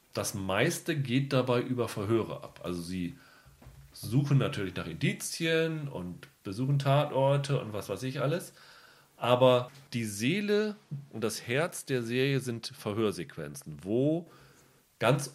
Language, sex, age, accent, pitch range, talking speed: German, male, 40-59, German, 105-135 Hz, 130 wpm